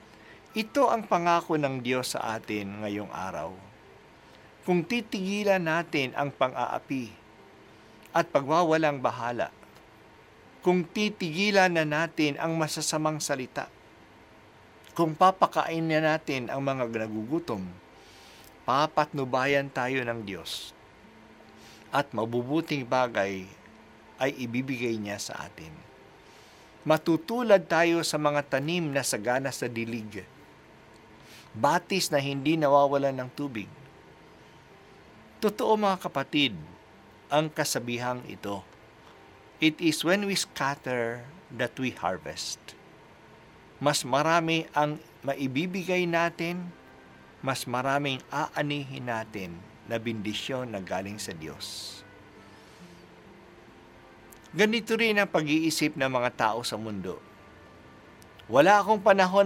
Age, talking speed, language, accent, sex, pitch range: 50-69, 100 wpm, Filipino, native, male, 110-160 Hz